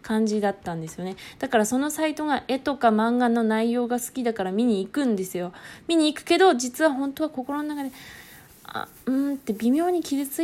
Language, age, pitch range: Japanese, 20-39, 210-280 Hz